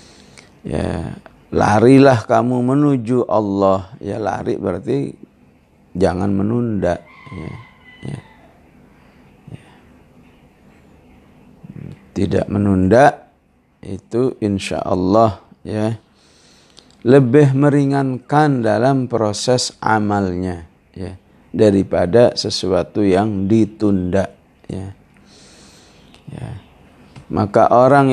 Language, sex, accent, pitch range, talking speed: English, male, Indonesian, 100-135 Hz, 70 wpm